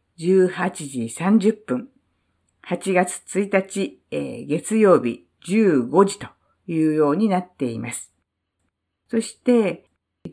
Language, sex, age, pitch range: Japanese, female, 50-69, 140-220 Hz